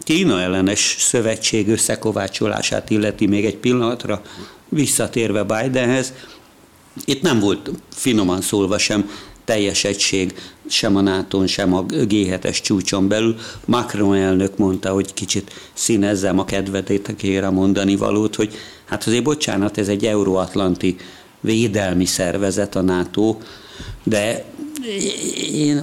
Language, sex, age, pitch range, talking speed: Hungarian, male, 60-79, 95-110 Hz, 115 wpm